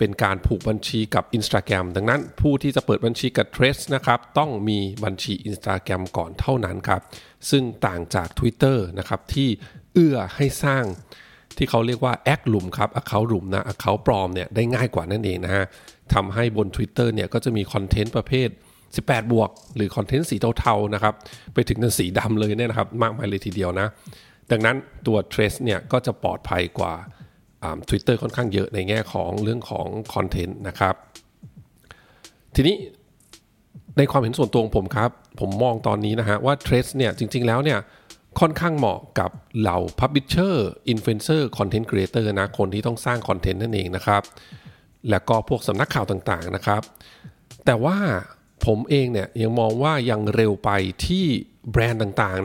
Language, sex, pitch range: Thai, male, 100-125 Hz